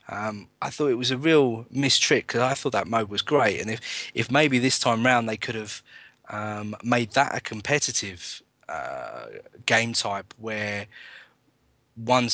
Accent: British